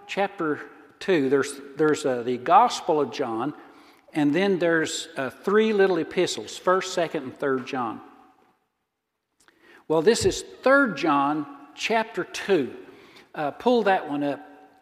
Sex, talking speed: male, 135 wpm